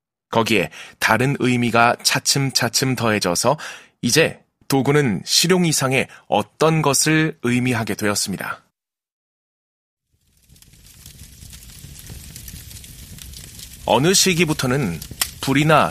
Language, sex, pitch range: Korean, male, 115-145 Hz